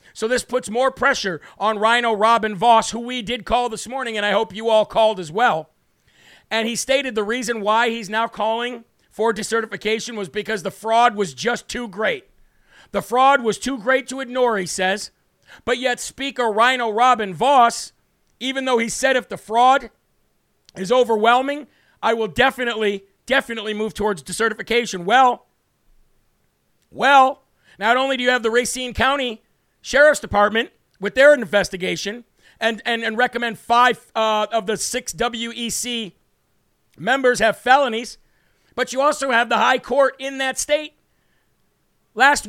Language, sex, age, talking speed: English, male, 50-69, 160 wpm